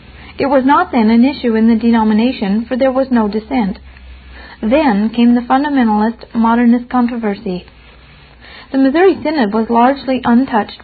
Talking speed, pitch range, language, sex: 145 wpm, 220-260 Hz, English, female